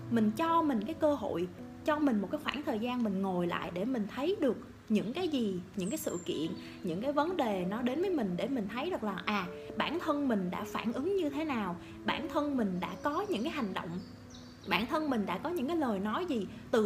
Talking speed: 250 wpm